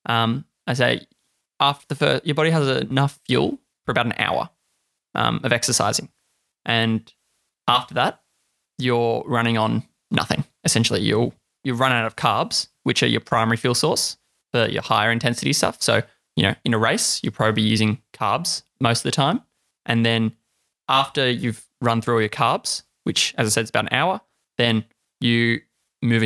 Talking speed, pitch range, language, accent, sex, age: 180 wpm, 115-130 Hz, English, Australian, male, 20-39